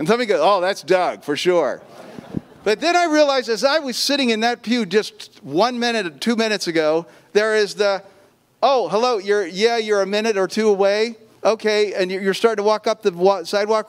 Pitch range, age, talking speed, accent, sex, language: 170-220 Hz, 40-59, 205 wpm, American, male, English